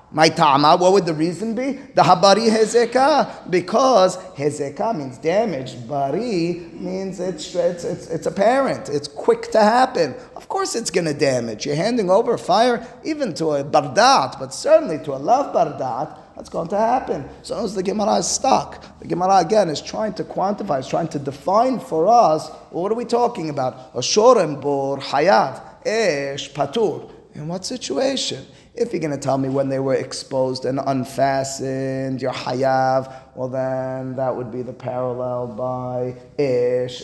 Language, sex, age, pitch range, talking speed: English, male, 30-49, 130-215 Hz, 160 wpm